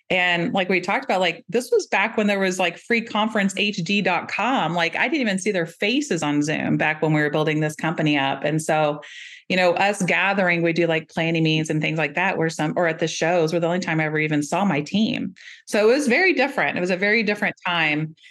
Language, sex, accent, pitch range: English, female, American, 150-190 Hz